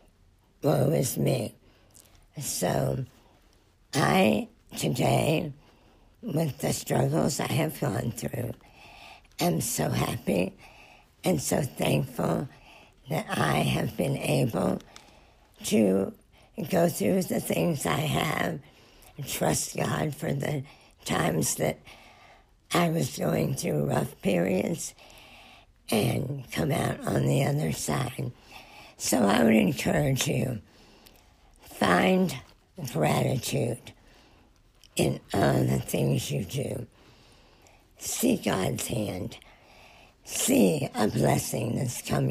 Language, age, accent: English, 60-79, American